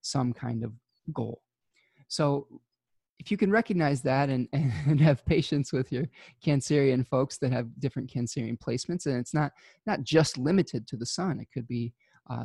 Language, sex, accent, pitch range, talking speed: English, male, American, 125-150 Hz, 175 wpm